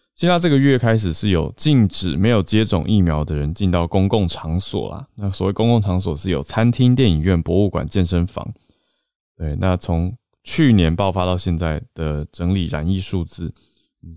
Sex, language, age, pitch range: male, Chinese, 20-39, 85-110 Hz